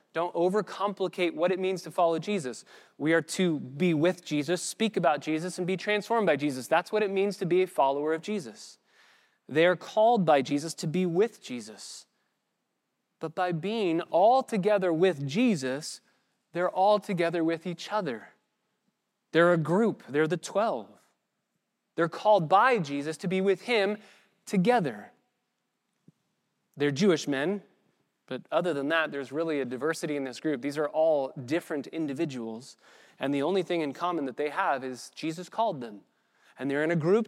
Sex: male